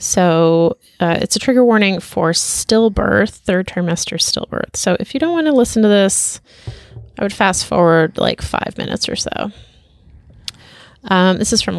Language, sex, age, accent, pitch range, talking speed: English, female, 30-49, American, 170-215 Hz, 170 wpm